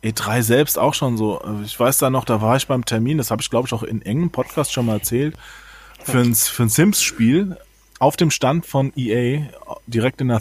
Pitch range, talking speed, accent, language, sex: 115-145 Hz, 220 wpm, German, German, male